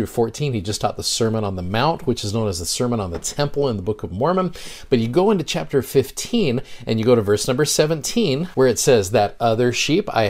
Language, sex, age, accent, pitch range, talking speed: English, male, 40-59, American, 105-140 Hz, 250 wpm